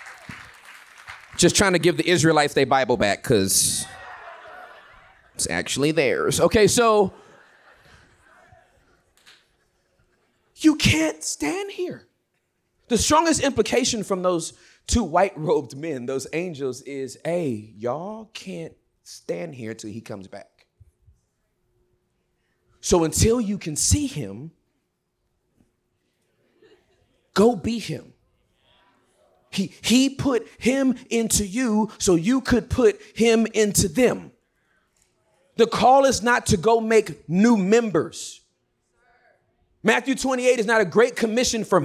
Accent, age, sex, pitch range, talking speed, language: American, 30-49, male, 160-250 Hz, 110 wpm, English